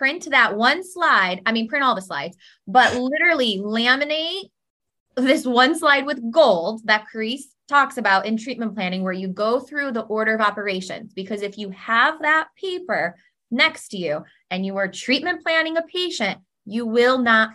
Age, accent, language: 20-39, American, English